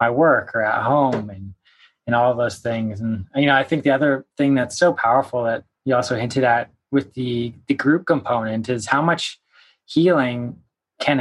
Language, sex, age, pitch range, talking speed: English, male, 20-39, 115-135 Hz, 200 wpm